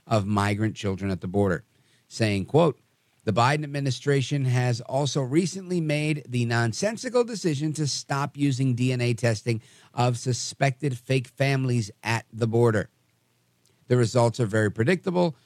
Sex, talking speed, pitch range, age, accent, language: male, 135 wpm, 105-135 Hz, 50-69, American, English